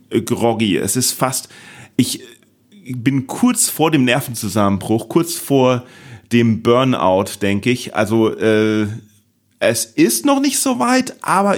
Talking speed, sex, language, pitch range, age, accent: 130 wpm, male, German, 130-180 Hz, 40-59, German